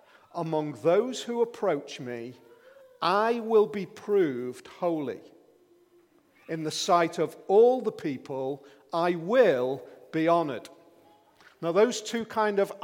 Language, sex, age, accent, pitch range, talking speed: English, male, 40-59, British, 160-230 Hz, 120 wpm